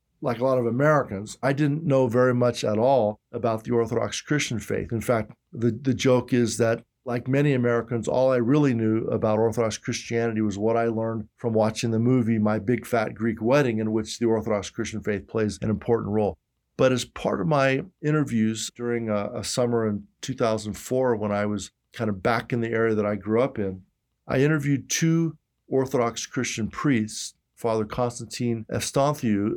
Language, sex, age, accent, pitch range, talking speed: English, male, 50-69, American, 110-125 Hz, 185 wpm